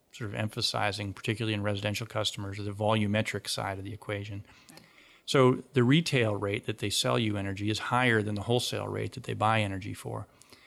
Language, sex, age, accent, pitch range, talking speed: English, male, 40-59, American, 105-130 Hz, 185 wpm